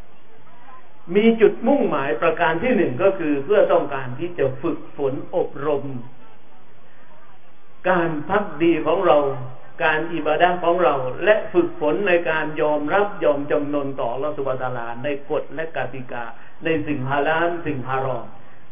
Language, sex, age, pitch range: Thai, male, 60-79, 150-195 Hz